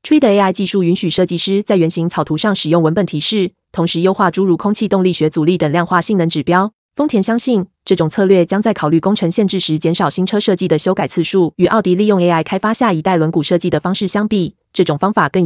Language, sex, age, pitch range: Chinese, female, 20-39, 170-200 Hz